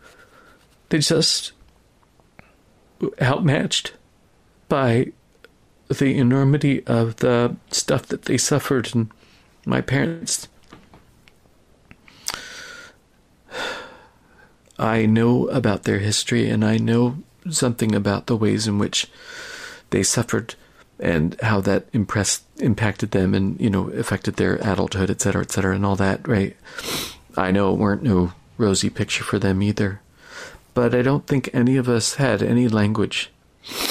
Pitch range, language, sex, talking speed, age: 95-130 Hz, English, male, 125 wpm, 40-59